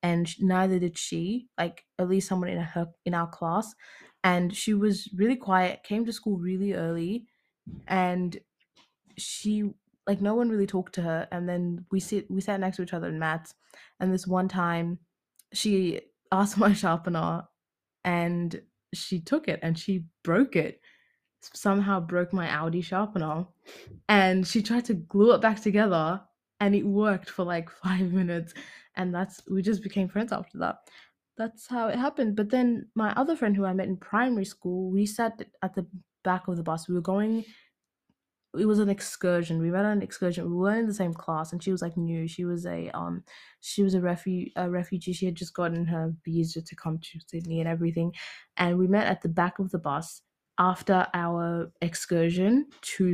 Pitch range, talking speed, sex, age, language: 170-205 Hz, 190 wpm, female, 20-39, English